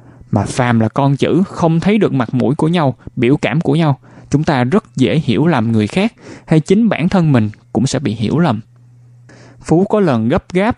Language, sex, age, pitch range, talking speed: Vietnamese, male, 20-39, 120-160 Hz, 215 wpm